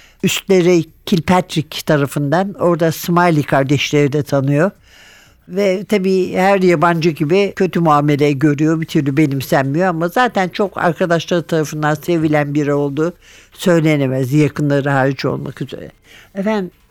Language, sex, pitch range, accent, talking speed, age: Turkish, male, 150-195 Hz, native, 115 wpm, 60-79